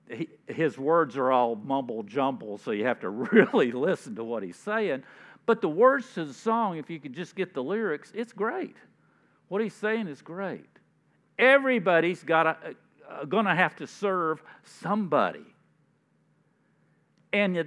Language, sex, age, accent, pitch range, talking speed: English, male, 50-69, American, 145-220 Hz, 145 wpm